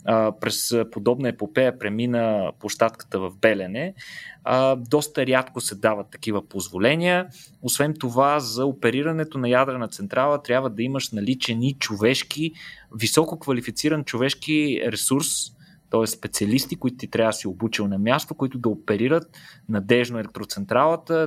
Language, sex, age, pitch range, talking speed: Bulgarian, male, 20-39, 110-140 Hz, 125 wpm